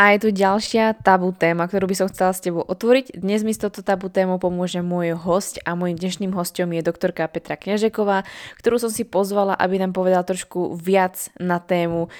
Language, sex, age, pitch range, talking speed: Slovak, female, 20-39, 175-195 Hz, 200 wpm